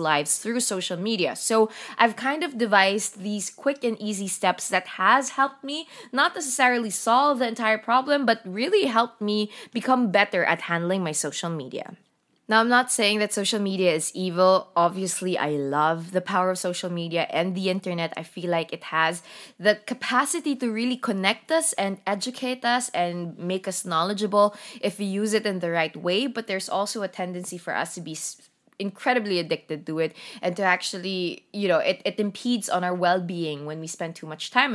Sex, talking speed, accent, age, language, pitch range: female, 190 wpm, Filipino, 20-39, English, 175-240 Hz